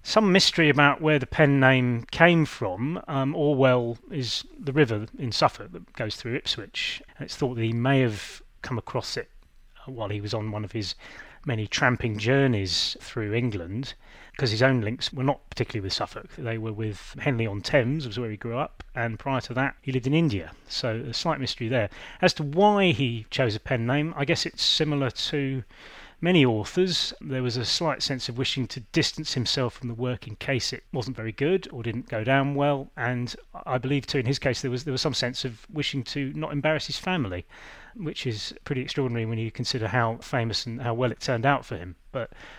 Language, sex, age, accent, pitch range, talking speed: English, male, 30-49, British, 115-140 Hz, 215 wpm